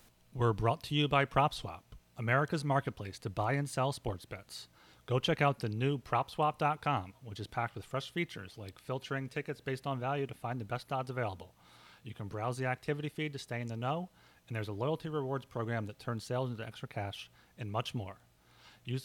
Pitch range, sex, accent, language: 110-140 Hz, male, American, English